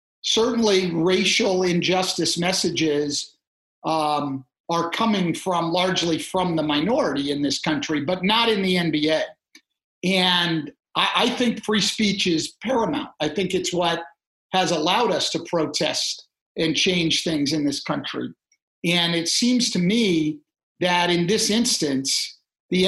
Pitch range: 170-215 Hz